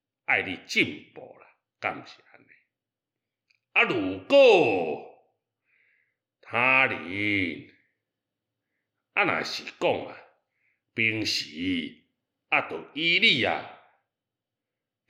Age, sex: 60-79, male